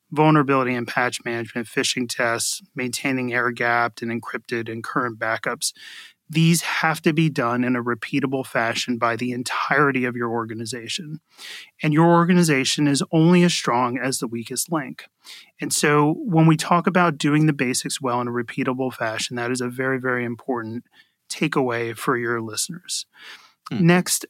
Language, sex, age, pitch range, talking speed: English, male, 30-49, 125-160 Hz, 160 wpm